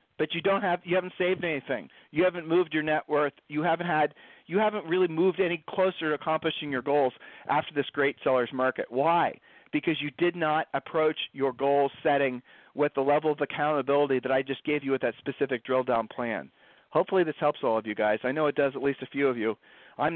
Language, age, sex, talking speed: English, 40-59, male, 225 wpm